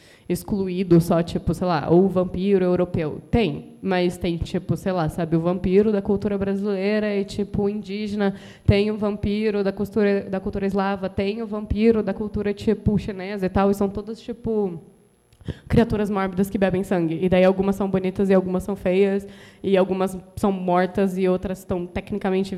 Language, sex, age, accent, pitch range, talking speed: Portuguese, female, 10-29, Brazilian, 185-220 Hz, 175 wpm